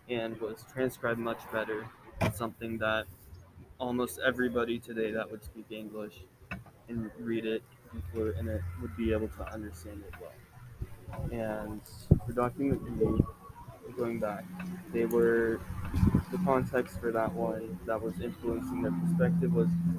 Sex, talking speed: male, 135 wpm